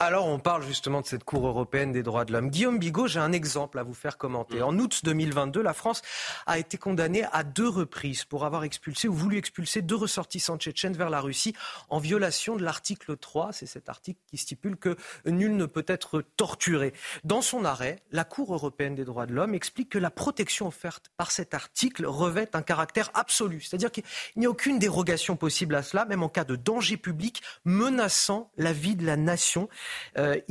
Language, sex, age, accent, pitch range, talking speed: French, male, 40-59, French, 150-200 Hz, 205 wpm